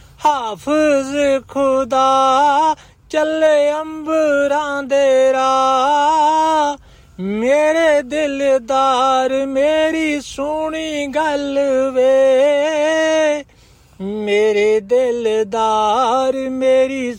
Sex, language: male, Punjabi